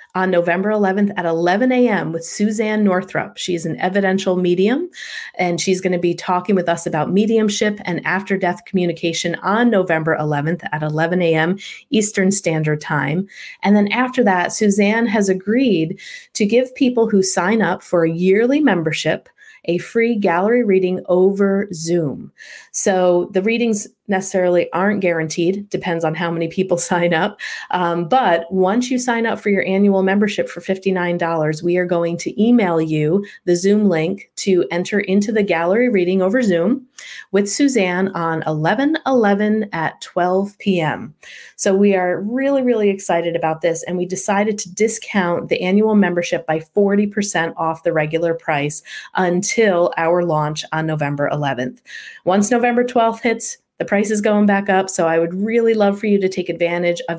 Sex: female